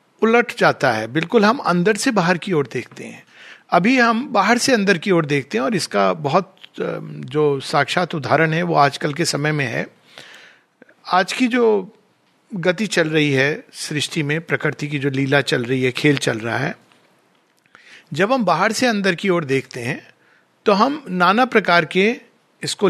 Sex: male